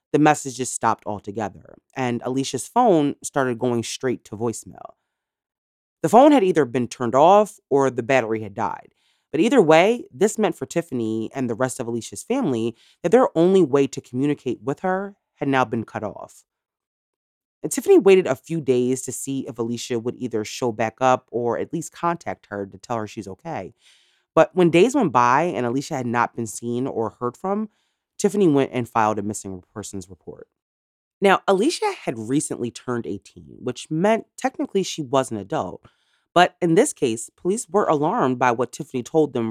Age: 30-49